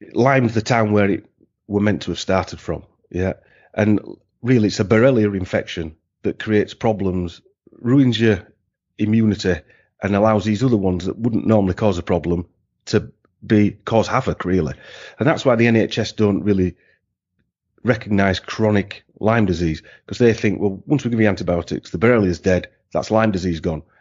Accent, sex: British, male